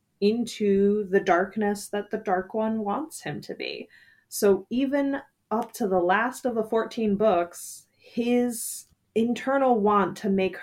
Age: 20-39